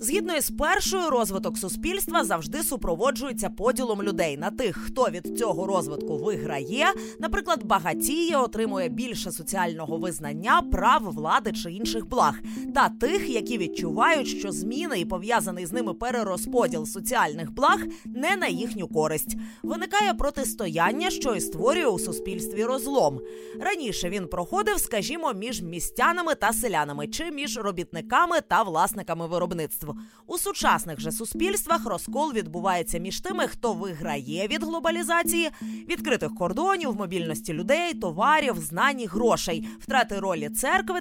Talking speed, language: 130 wpm, Ukrainian